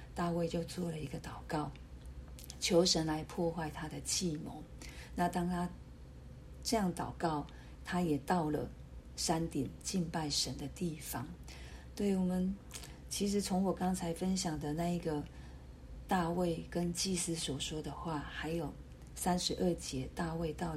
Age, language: 40-59, Chinese